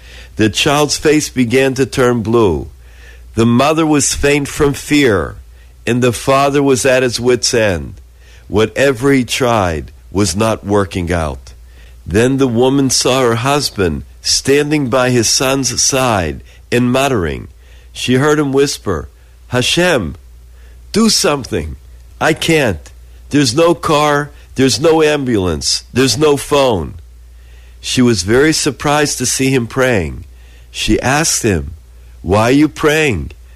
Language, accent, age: English, American, 50-69